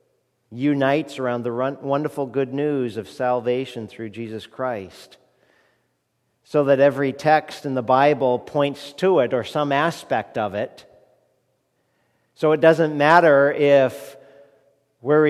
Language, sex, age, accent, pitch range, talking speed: English, male, 50-69, American, 125-160 Hz, 125 wpm